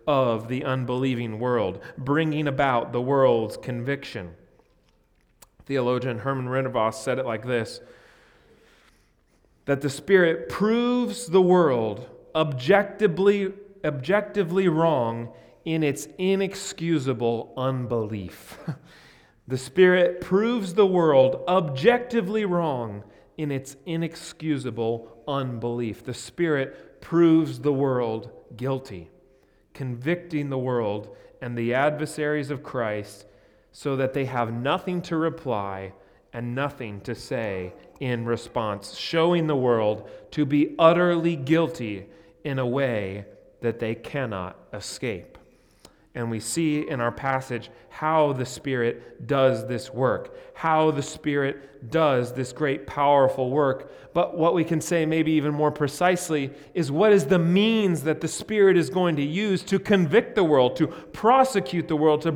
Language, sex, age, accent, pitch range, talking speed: English, male, 40-59, American, 120-170 Hz, 125 wpm